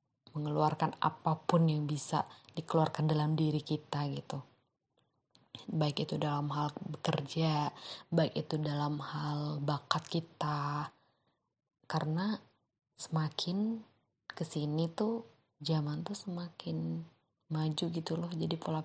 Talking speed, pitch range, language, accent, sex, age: 100 wpm, 150-165 Hz, Indonesian, native, female, 20-39